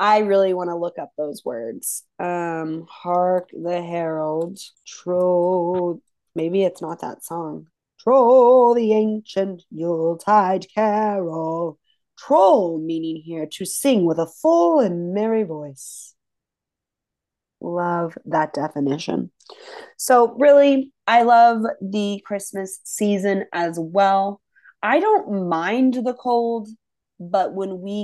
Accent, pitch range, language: American, 165-205 Hz, English